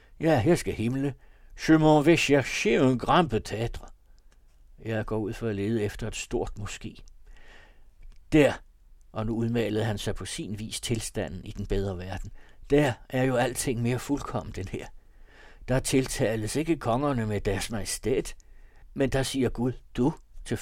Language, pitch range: Danish, 110-140 Hz